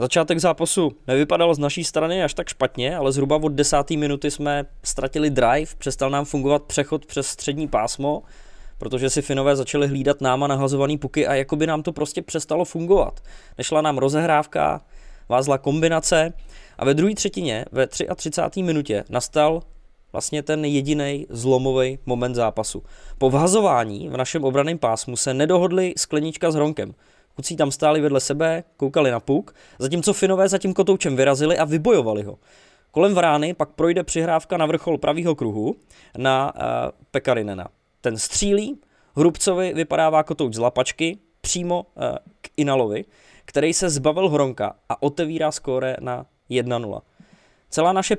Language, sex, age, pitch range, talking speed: English, male, 20-39, 135-165 Hz, 150 wpm